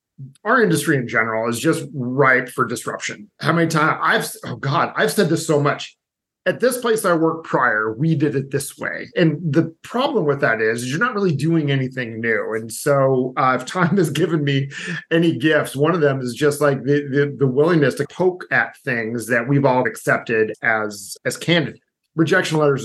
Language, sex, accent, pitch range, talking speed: English, male, American, 125-155 Hz, 200 wpm